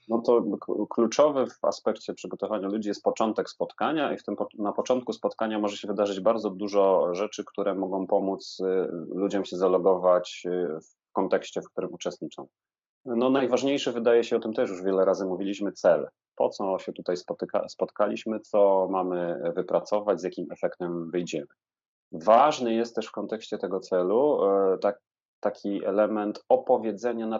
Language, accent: Polish, native